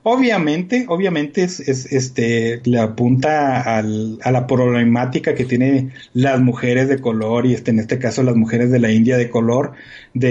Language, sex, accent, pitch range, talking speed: English, male, Mexican, 120-170 Hz, 175 wpm